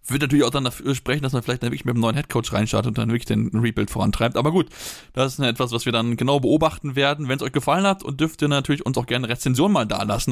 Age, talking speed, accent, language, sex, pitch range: 20-39, 290 wpm, German, German, male, 120-140 Hz